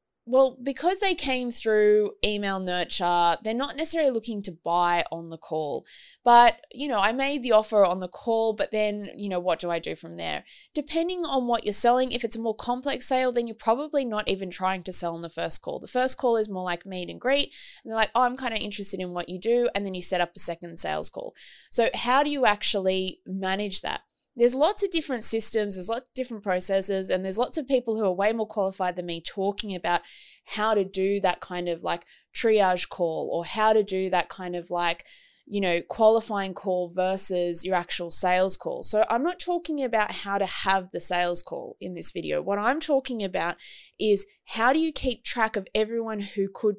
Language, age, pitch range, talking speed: English, 20-39, 185-245 Hz, 225 wpm